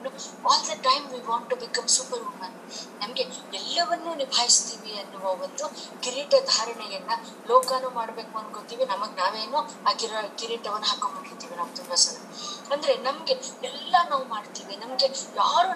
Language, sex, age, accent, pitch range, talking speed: Kannada, female, 20-39, native, 215-270 Hz, 120 wpm